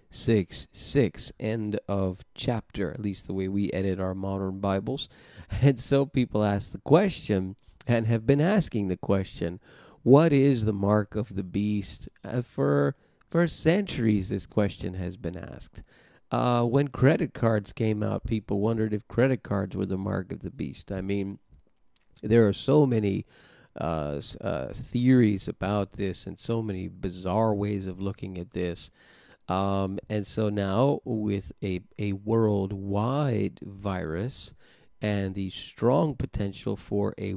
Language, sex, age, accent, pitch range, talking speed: English, male, 40-59, American, 95-115 Hz, 150 wpm